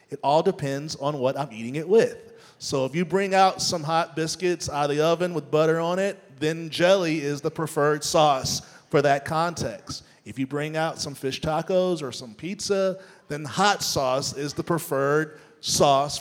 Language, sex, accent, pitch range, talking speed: English, male, American, 150-195 Hz, 190 wpm